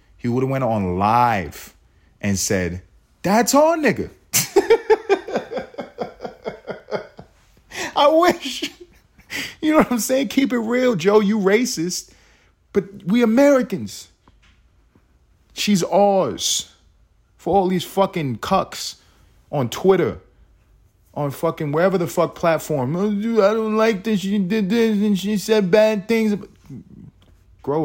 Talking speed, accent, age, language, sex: 120 wpm, American, 30-49, English, male